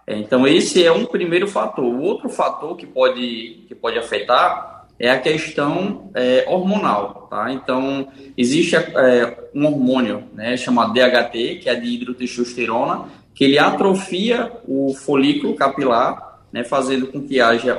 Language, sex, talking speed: Portuguese, male, 145 wpm